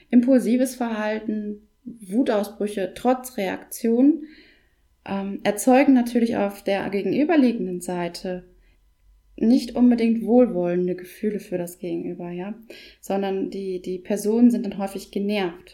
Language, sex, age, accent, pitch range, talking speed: German, female, 20-39, German, 185-245 Hz, 105 wpm